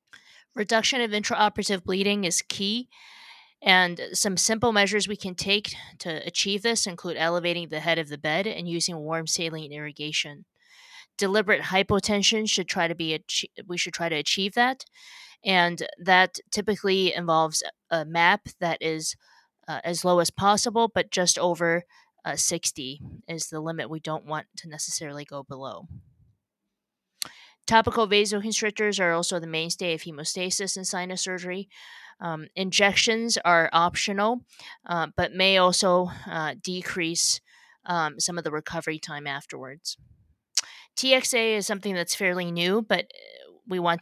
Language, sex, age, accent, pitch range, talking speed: English, female, 20-39, American, 160-205 Hz, 145 wpm